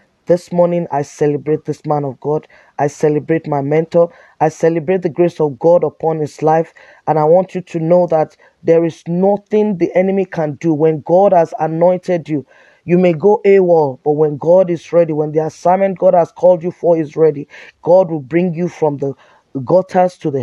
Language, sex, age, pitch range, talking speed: English, male, 20-39, 150-180 Hz, 200 wpm